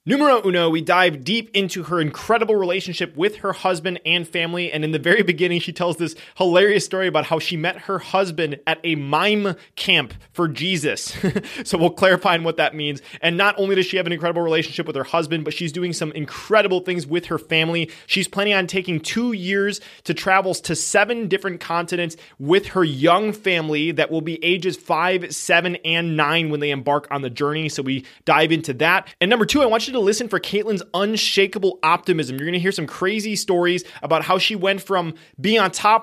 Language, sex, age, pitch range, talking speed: English, male, 20-39, 155-190 Hz, 210 wpm